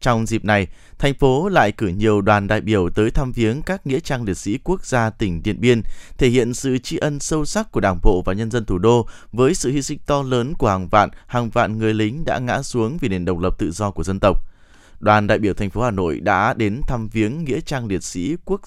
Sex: male